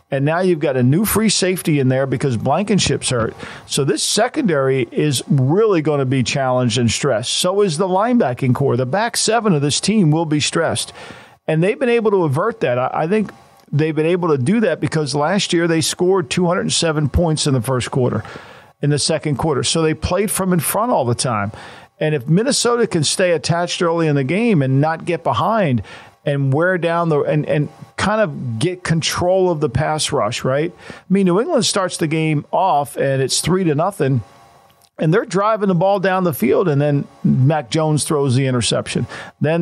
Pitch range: 140-180 Hz